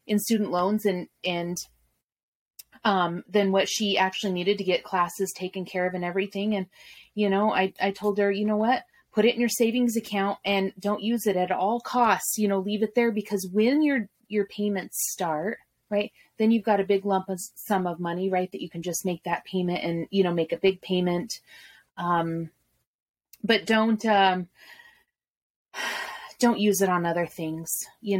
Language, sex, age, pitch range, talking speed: English, female, 30-49, 180-210 Hz, 190 wpm